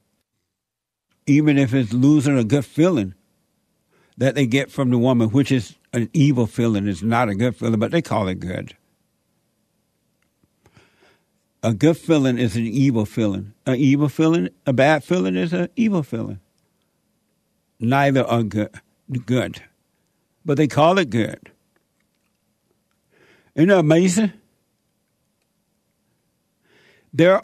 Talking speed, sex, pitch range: 120 wpm, male, 120-155 Hz